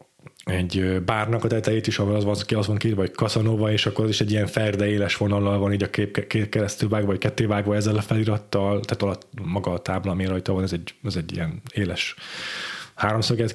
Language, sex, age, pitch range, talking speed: Hungarian, male, 20-39, 100-120 Hz, 215 wpm